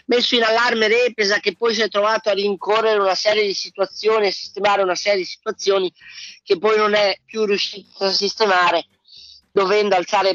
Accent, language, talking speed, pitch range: native, Italian, 180 wpm, 180-220 Hz